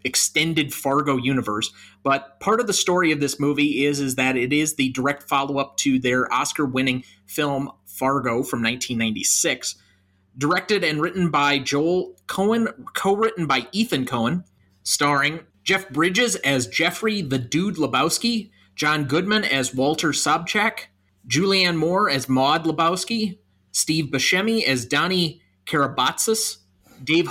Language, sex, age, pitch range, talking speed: English, male, 30-49, 125-180 Hz, 145 wpm